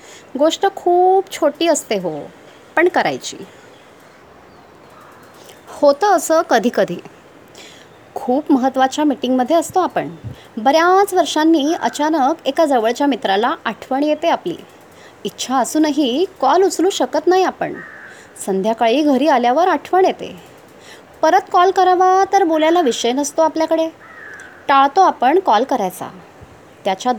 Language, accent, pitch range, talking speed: Marathi, native, 250-335 Hz, 110 wpm